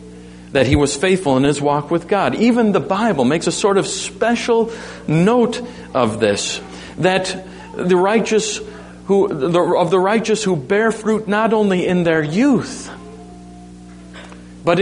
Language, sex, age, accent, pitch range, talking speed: English, male, 50-69, American, 135-225 Hz, 145 wpm